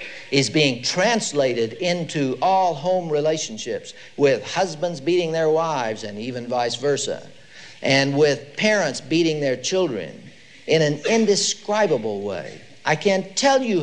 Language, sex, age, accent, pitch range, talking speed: English, male, 60-79, American, 125-185 Hz, 130 wpm